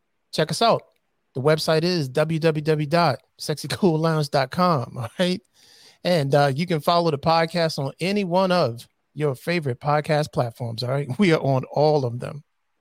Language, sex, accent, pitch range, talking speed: English, male, American, 140-165 Hz, 150 wpm